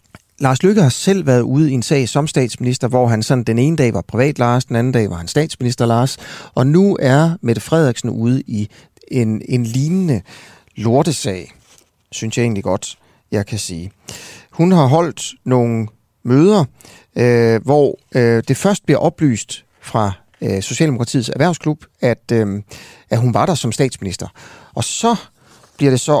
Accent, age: native, 30-49